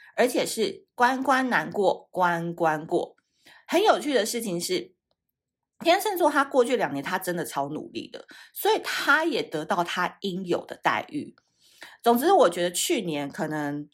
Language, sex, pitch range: Chinese, female, 170-260 Hz